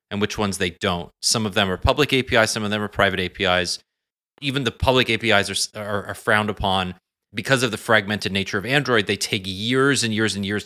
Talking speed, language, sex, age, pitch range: 225 wpm, English, male, 30-49, 95-110 Hz